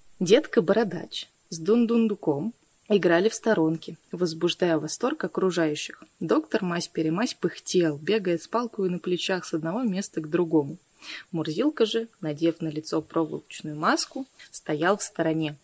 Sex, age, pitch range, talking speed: female, 20-39, 160-220 Hz, 130 wpm